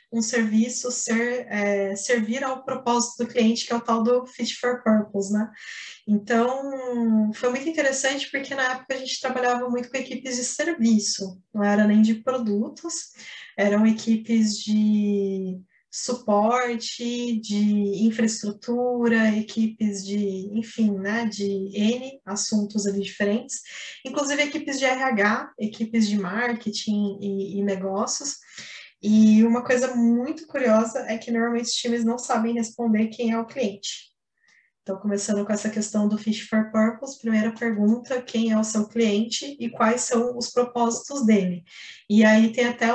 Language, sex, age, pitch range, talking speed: Portuguese, female, 20-39, 210-245 Hz, 150 wpm